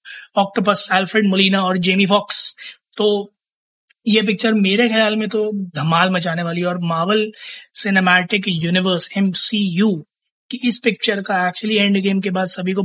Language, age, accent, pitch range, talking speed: Hindi, 20-39, native, 175-205 Hz, 145 wpm